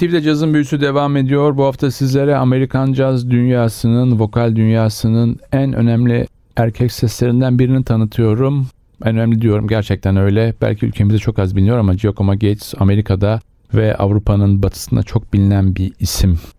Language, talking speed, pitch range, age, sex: Turkish, 145 wpm, 95-110 Hz, 40-59, male